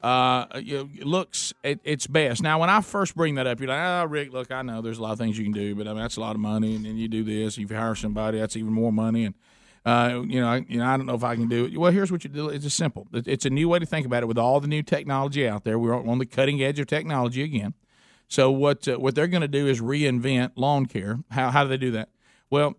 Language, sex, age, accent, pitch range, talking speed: English, male, 50-69, American, 115-145 Hz, 305 wpm